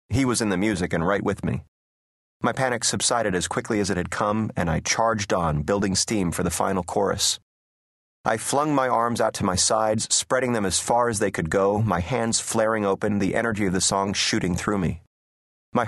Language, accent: English, American